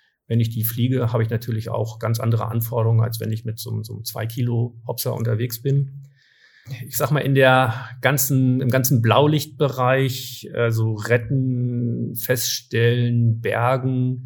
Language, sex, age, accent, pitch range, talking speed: German, male, 50-69, German, 115-125 Hz, 145 wpm